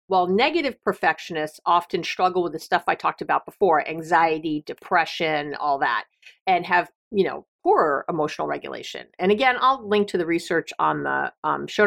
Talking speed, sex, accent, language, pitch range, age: 170 wpm, female, American, English, 175-250 Hz, 40-59